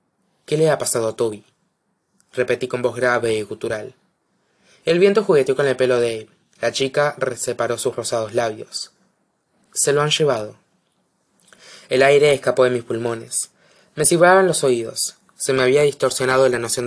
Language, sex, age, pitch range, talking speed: Spanish, male, 20-39, 120-160 Hz, 165 wpm